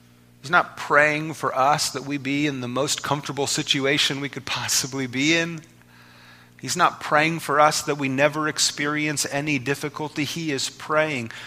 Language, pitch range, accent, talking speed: English, 95-145 Hz, American, 165 wpm